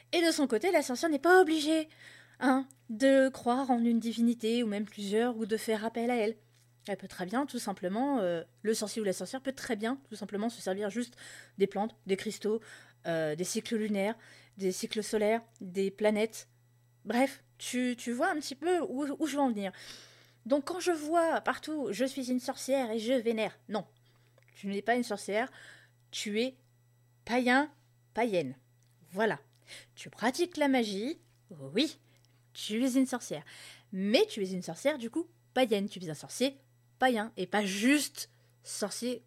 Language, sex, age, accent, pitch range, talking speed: French, female, 20-39, French, 170-250 Hz, 180 wpm